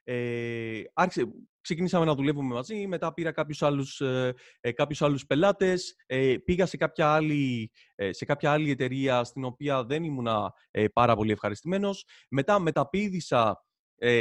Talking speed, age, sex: 150 wpm, 30-49, male